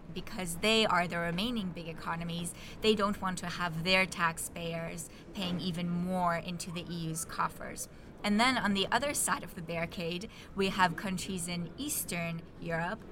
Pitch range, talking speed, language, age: 170-200 Hz, 165 wpm, English, 20-39